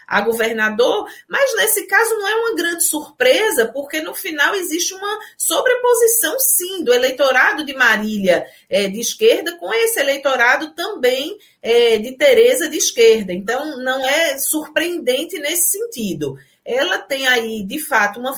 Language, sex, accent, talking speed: Portuguese, female, Brazilian, 140 wpm